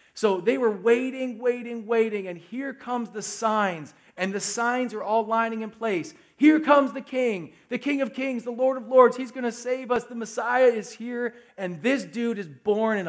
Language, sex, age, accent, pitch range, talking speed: English, male, 40-59, American, 165-235 Hz, 210 wpm